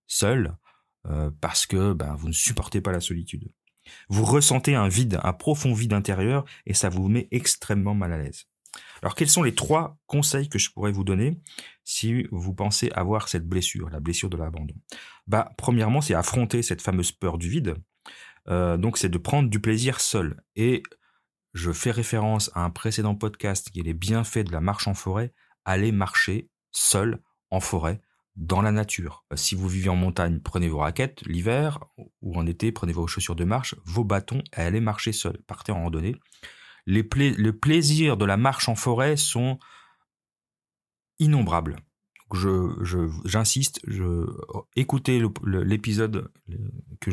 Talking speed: 170 wpm